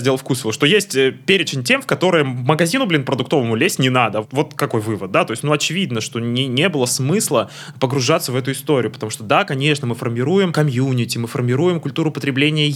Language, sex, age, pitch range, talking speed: Russian, male, 20-39, 125-150 Hz, 200 wpm